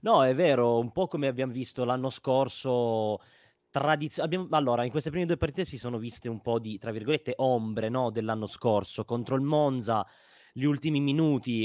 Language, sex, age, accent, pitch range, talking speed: Italian, male, 20-39, native, 105-135 Hz, 185 wpm